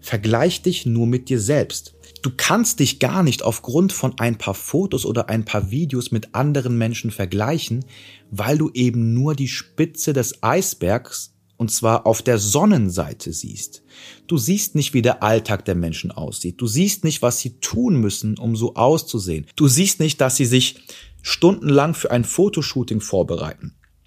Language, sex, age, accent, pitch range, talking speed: German, male, 30-49, German, 105-140 Hz, 170 wpm